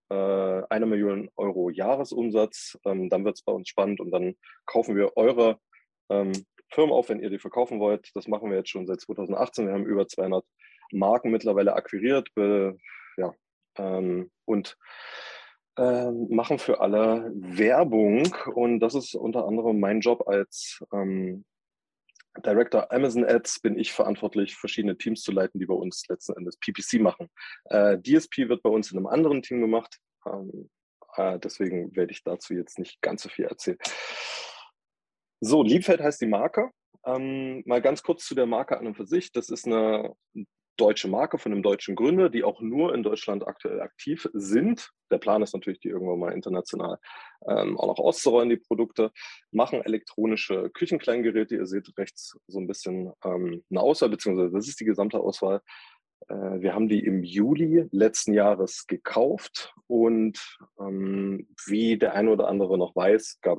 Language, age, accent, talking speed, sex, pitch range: German, 20-39, German, 165 wpm, male, 95-120 Hz